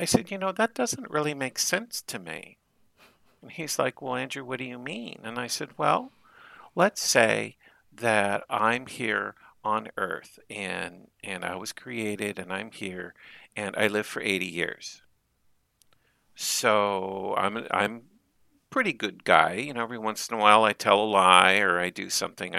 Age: 50-69